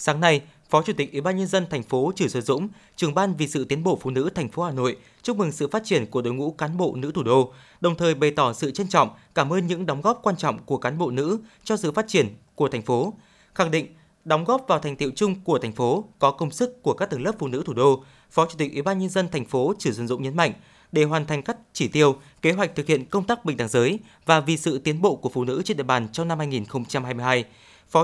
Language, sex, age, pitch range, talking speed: Vietnamese, male, 20-39, 135-190 Hz, 280 wpm